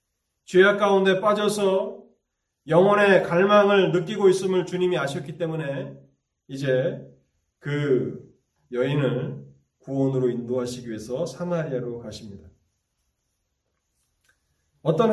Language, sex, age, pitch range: Korean, male, 30-49, 125-190 Hz